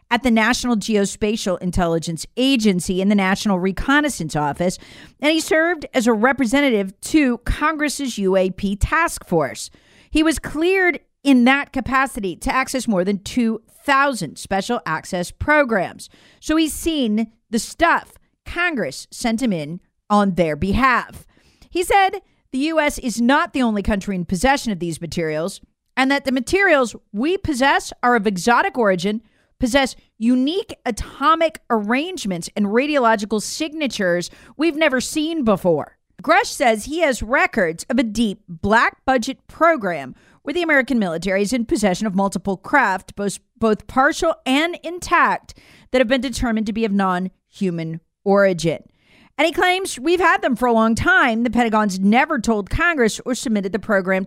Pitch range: 200-295 Hz